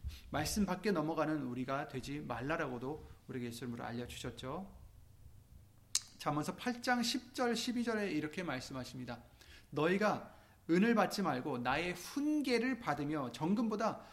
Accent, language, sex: native, Korean, male